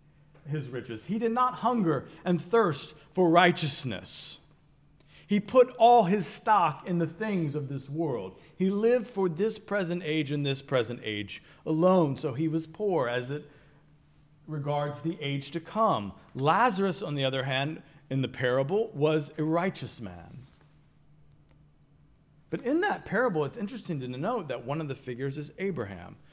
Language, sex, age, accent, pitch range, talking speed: English, male, 40-59, American, 130-165 Hz, 160 wpm